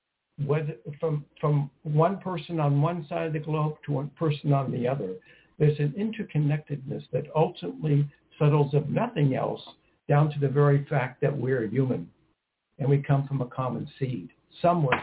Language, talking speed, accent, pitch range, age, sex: English, 170 wpm, American, 140-160 Hz, 60-79, male